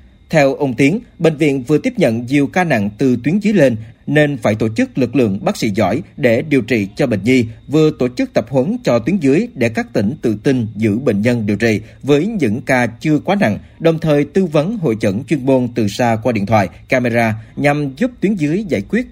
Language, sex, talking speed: Vietnamese, male, 230 wpm